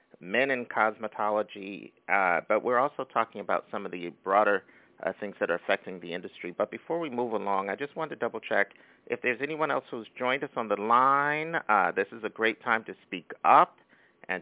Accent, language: American, English